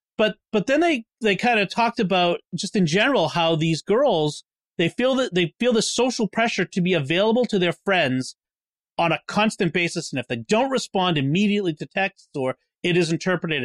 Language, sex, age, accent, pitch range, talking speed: English, male, 40-59, American, 155-205 Hz, 200 wpm